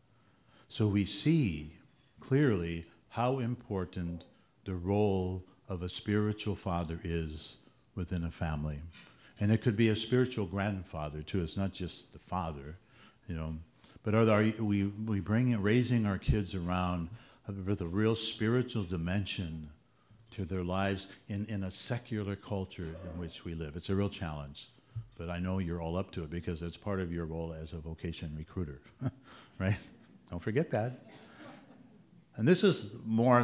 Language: English